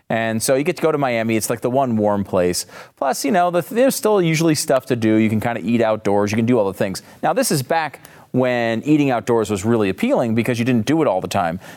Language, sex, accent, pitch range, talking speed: English, male, American, 105-150 Hz, 270 wpm